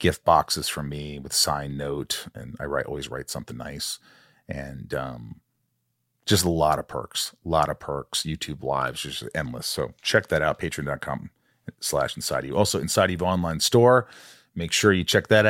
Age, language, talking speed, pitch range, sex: 40-59, English, 180 wpm, 75-95 Hz, male